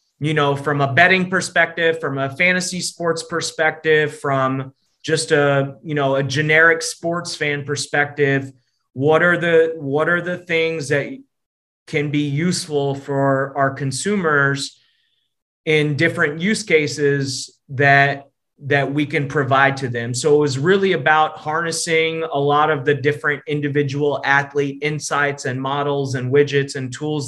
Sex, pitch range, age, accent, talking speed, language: male, 140-165 Hz, 30-49, American, 145 wpm, English